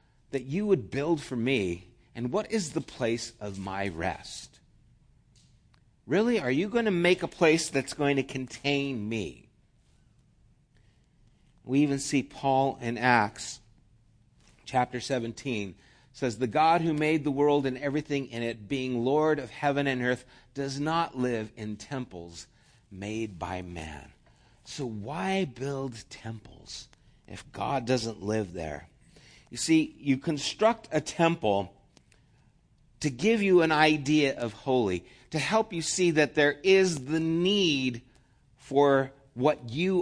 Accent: American